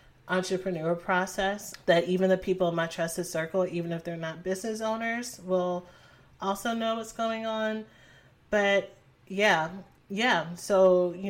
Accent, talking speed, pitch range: American, 145 wpm, 170-195 Hz